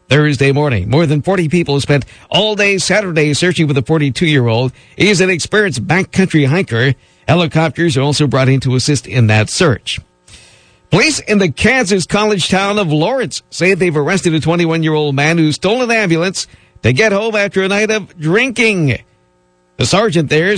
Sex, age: male, 50-69